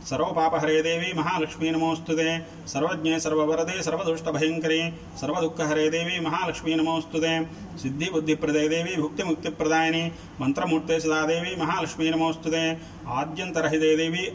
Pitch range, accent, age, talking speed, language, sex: 155-165 Hz, native, 40-59, 65 wpm, Telugu, male